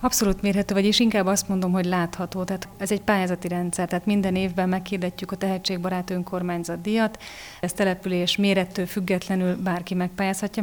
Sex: female